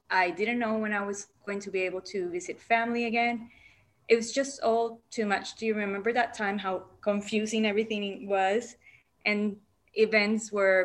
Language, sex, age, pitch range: English, female, 20-39, 185-235 Hz